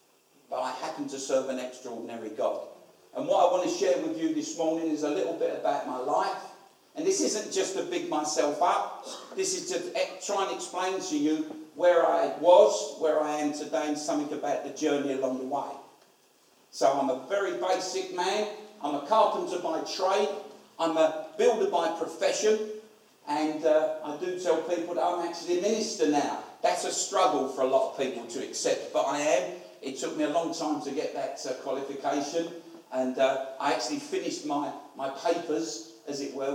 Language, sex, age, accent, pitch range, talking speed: English, male, 50-69, British, 140-200 Hz, 195 wpm